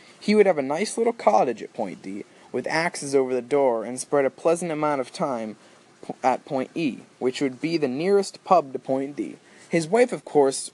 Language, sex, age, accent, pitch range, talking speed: English, male, 20-39, American, 135-185 Hz, 210 wpm